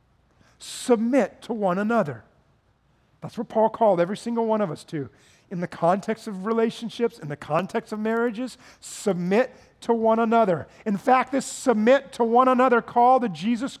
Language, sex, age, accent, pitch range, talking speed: English, male, 40-59, American, 190-255 Hz, 165 wpm